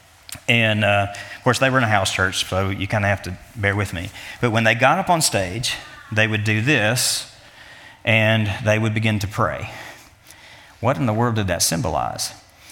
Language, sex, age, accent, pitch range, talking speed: English, male, 40-59, American, 105-130 Hz, 205 wpm